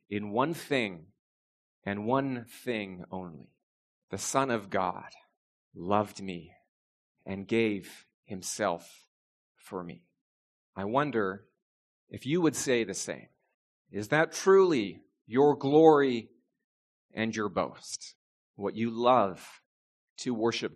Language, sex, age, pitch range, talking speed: English, male, 40-59, 110-150 Hz, 115 wpm